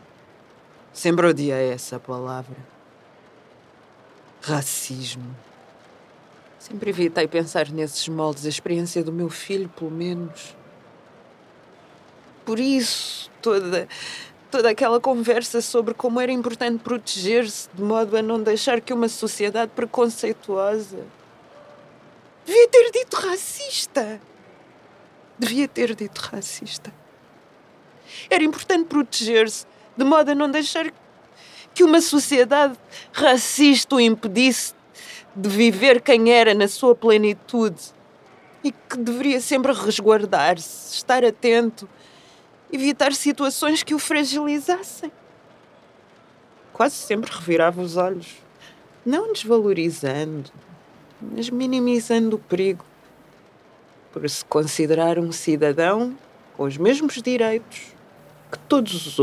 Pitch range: 175-265 Hz